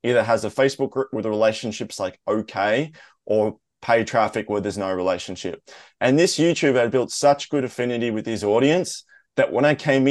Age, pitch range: 20-39, 105-135 Hz